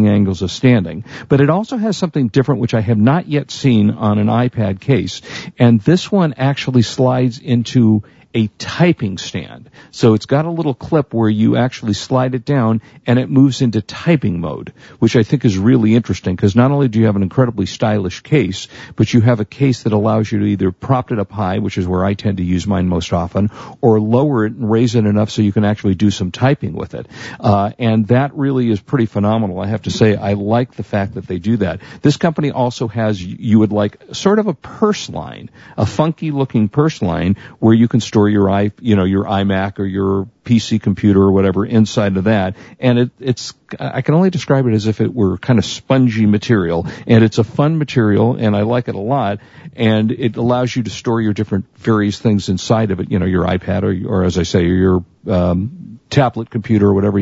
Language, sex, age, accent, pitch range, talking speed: English, male, 50-69, American, 100-130 Hz, 220 wpm